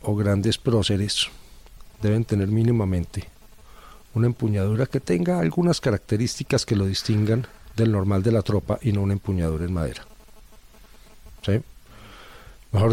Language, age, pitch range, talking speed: Spanish, 40-59, 95-125 Hz, 125 wpm